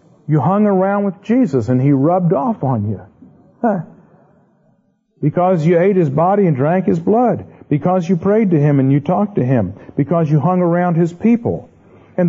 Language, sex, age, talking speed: English, male, 50-69, 180 wpm